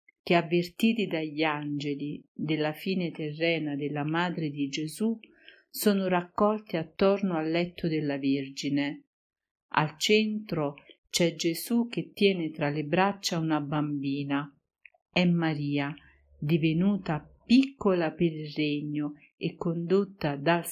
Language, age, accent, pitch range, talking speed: Italian, 50-69, native, 150-180 Hz, 115 wpm